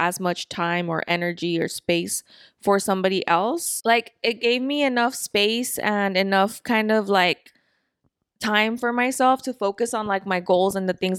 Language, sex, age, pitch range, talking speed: English, female, 20-39, 175-210 Hz, 175 wpm